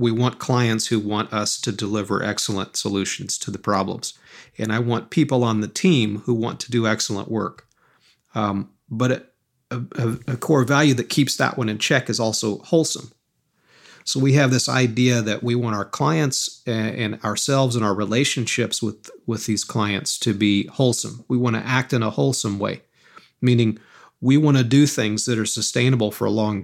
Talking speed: 190 wpm